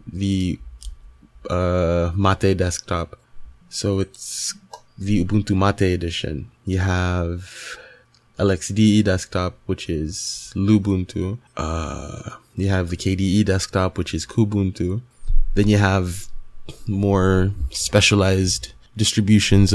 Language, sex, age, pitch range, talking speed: English, male, 20-39, 90-110 Hz, 95 wpm